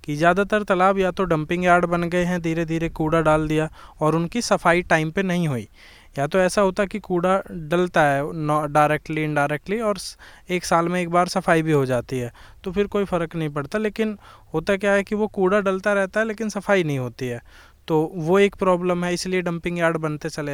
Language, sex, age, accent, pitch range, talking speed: Hindi, male, 20-39, native, 155-195 Hz, 215 wpm